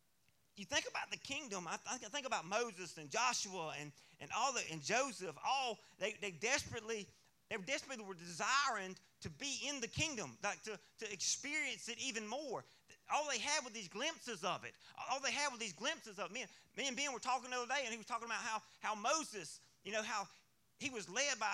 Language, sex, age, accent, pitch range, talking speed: English, male, 30-49, American, 185-260 Hz, 220 wpm